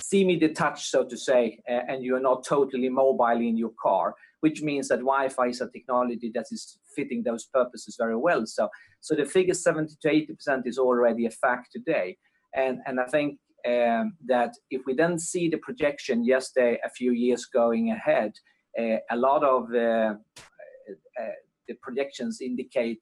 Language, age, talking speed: English, 40-59, 175 wpm